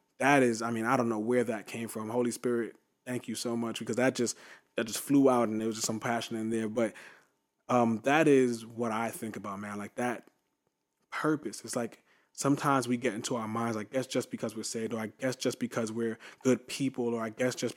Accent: American